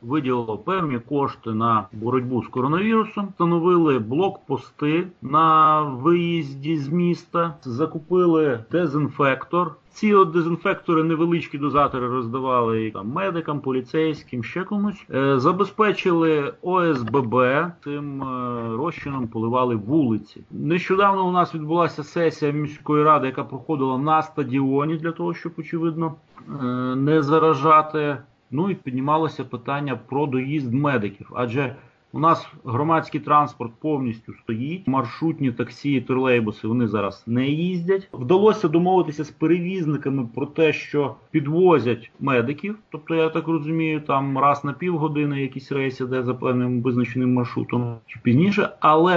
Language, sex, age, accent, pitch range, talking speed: Ukrainian, male, 30-49, native, 125-165 Hz, 125 wpm